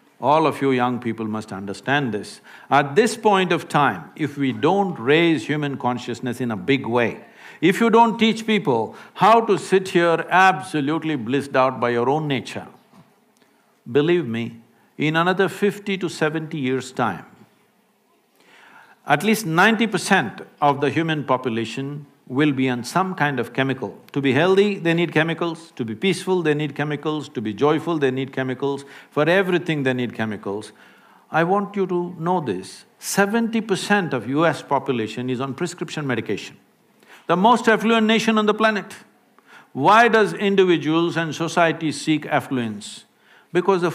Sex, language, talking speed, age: male, English, 160 wpm, 60-79